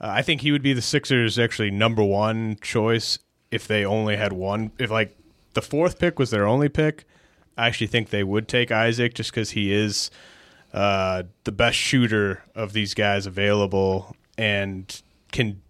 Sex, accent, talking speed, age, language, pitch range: male, American, 175 wpm, 30-49, English, 105-125 Hz